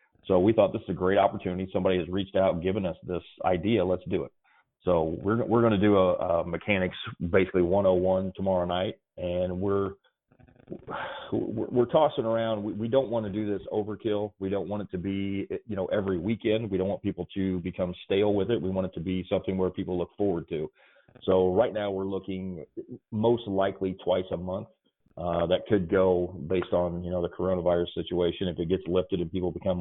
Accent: American